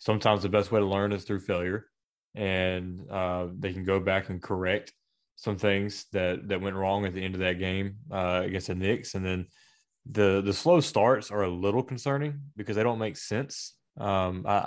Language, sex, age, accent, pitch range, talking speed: English, male, 20-39, American, 95-115 Hz, 205 wpm